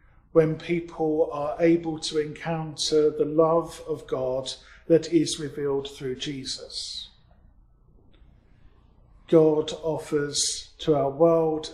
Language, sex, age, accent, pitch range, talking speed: English, male, 40-59, British, 135-165 Hz, 100 wpm